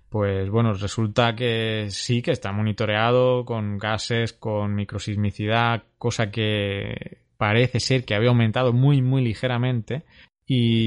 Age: 20-39